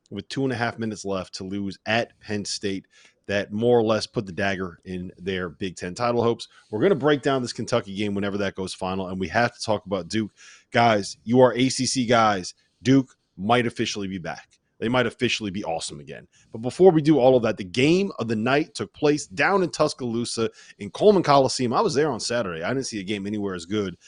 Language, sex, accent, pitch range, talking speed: English, male, American, 95-125 Hz, 230 wpm